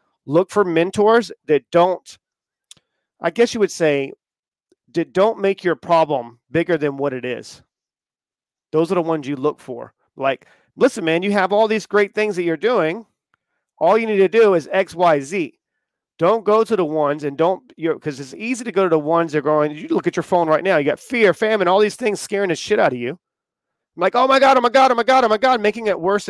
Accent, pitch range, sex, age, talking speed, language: American, 160-205 Hz, male, 40-59, 235 wpm, English